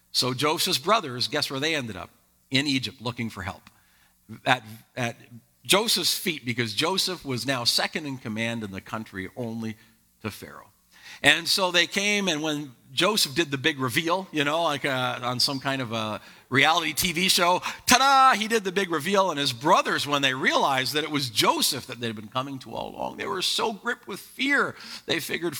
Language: English